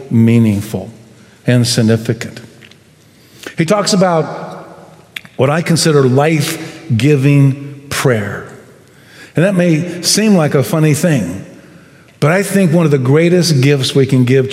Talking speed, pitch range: 125 wpm, 125-160 Hz